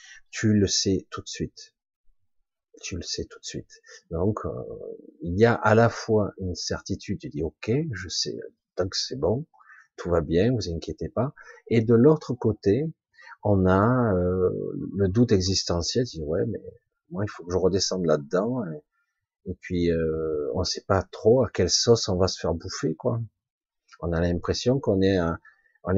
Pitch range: 95-125 Hz